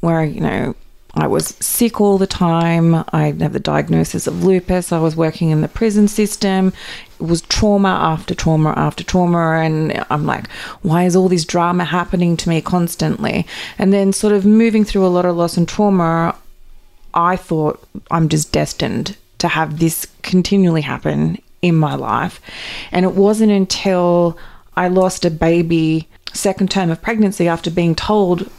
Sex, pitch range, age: female, 160-185 Hz, 30-49